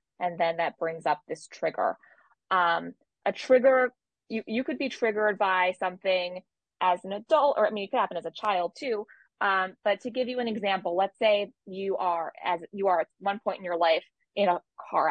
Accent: American